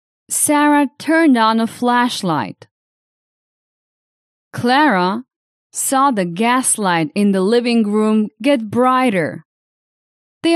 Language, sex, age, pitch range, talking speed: English, female, 20-39, 200-275 Hz, 90 wpm